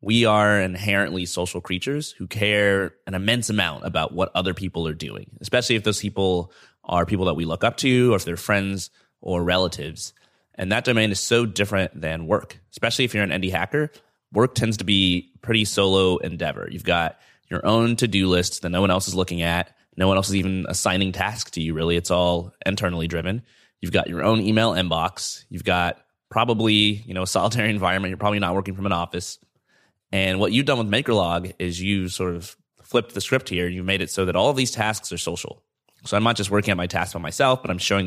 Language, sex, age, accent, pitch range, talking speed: English, male, 20-39, American, 90-105 Hz, 220 wpm